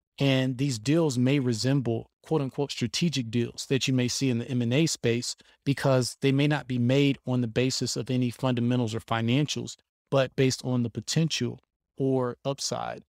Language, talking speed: English, 175 wpm